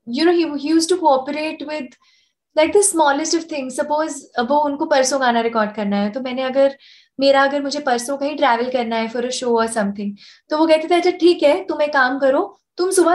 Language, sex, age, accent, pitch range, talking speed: Hindi, female, 20-39, native, 250-320 Hz, 225 wpm